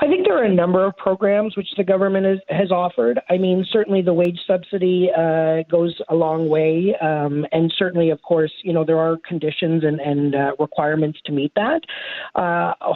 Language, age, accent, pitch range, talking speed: English, 40-59, American, 155-185 Hz, 195 wpm